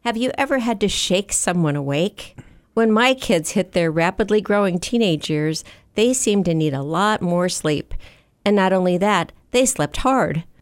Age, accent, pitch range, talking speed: 50-69, American, 165-215 Hz, 180 wpm